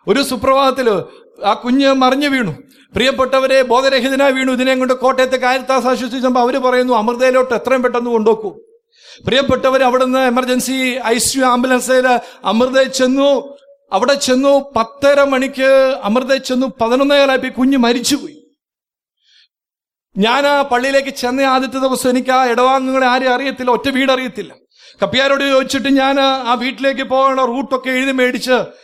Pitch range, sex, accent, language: 245-270 Hz, male, Indian, English